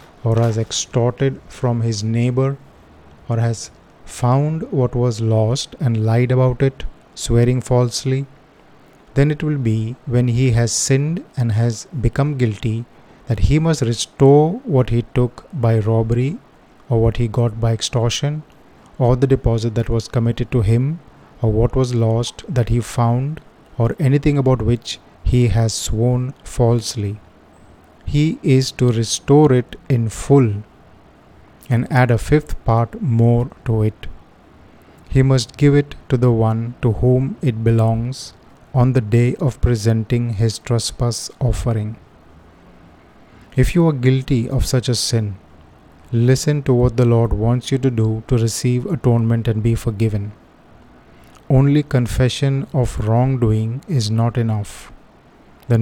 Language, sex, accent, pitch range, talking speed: Hindi, male, native, 115-130 Hz, 145 wpm